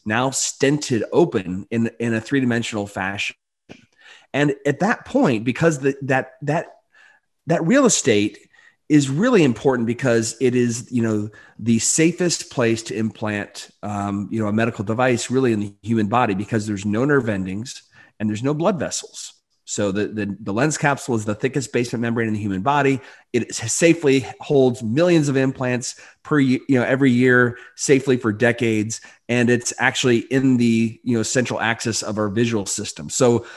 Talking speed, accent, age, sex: 175 wpm, American, 30-49, male